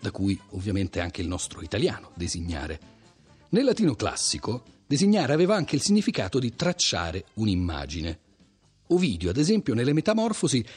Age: 40-59